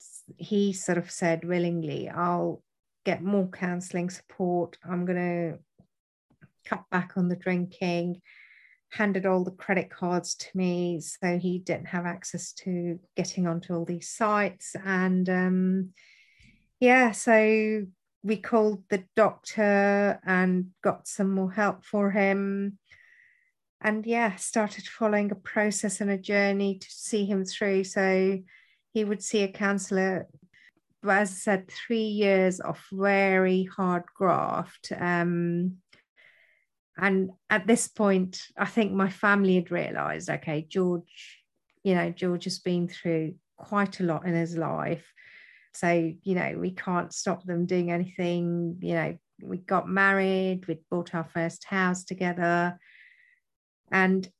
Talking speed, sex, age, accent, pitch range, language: 140 wpm, female, 40-59, British, 175-200 Hz, English